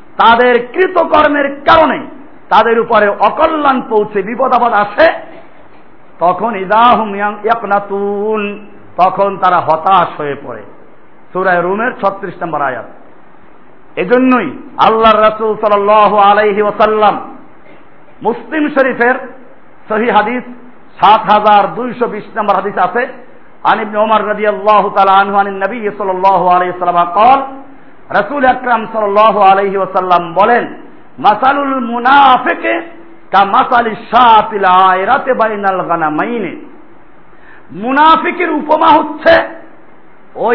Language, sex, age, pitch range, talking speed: Bengali, male, 50-69, 205-275 Hz, 40 wpm